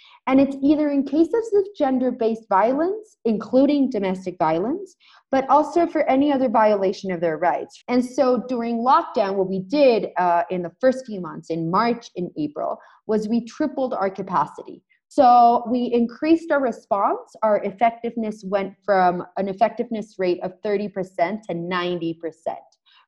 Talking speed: 145 wpm